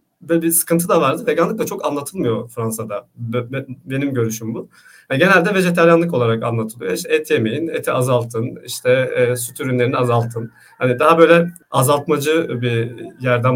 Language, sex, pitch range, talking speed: Turkish, male, 115-165 Hz, 160 wpm